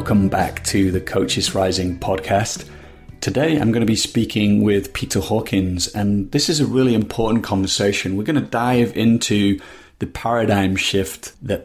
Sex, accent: male, British